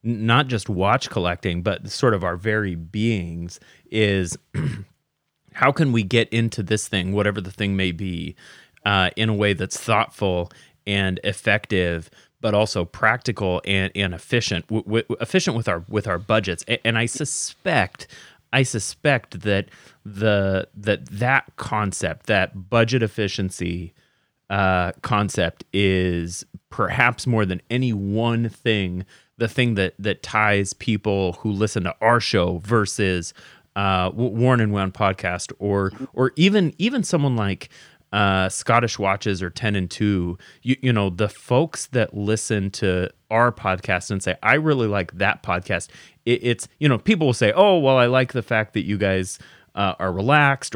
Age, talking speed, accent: 30-49, 160 wpm, American